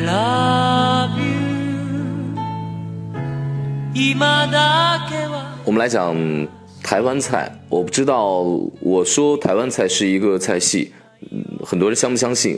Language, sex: Chinese, male